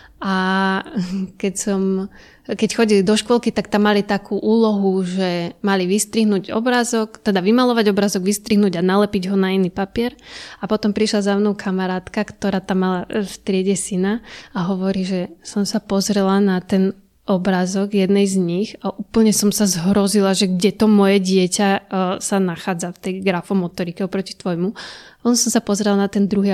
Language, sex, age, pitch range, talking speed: Slovak, female, 20-39, 190-210 Hz, 165 wpm